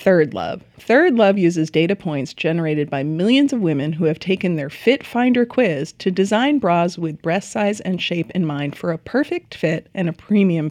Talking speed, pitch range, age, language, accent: 200 wpm, 160-215 Hz, 30-49, English, American